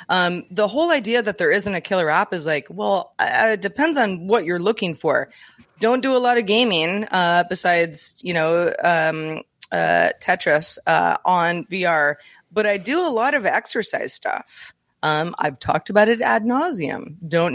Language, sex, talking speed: English, female, 180 wpm